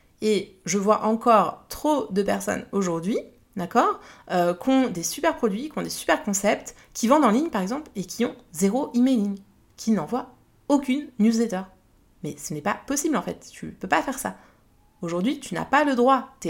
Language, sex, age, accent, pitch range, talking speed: French, female, 30-49, French, 180-245 Hz, 195 wpm